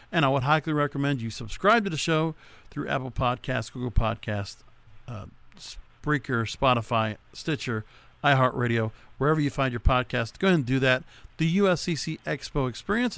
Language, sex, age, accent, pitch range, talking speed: English, male, 50-69, American, 125-170 Hz, 155 wpm